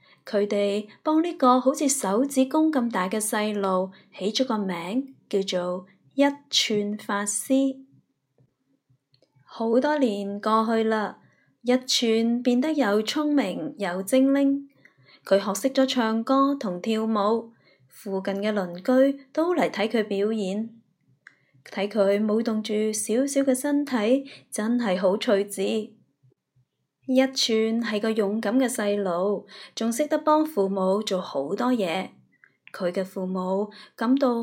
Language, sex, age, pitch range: Chinese, female, 20-39, 195-250 Hz